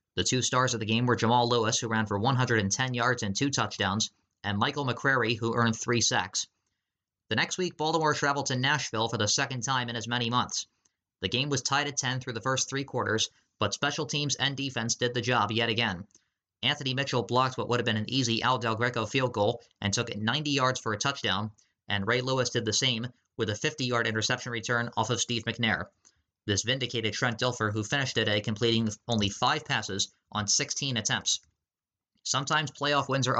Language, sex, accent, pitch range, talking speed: English, male, American, 110-130 Hz, 205 wpm